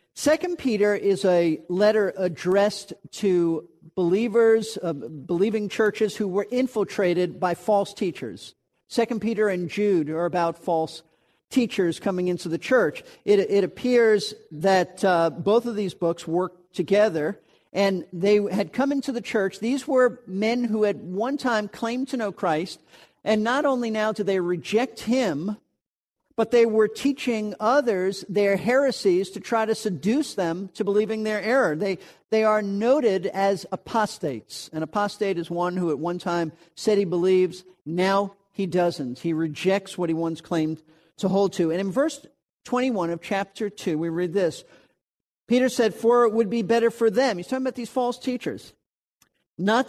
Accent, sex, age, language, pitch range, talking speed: American, male, 50-69, English, 180-225 Hz, 165 wpm